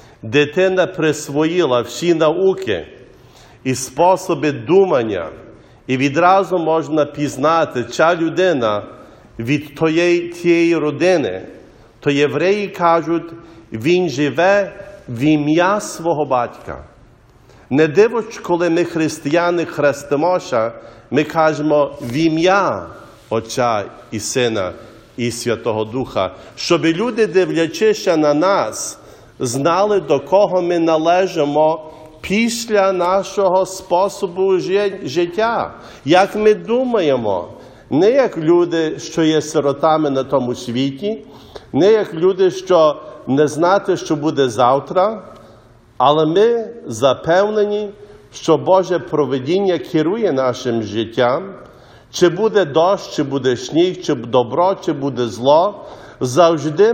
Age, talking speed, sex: 40-59, 100 wpm, male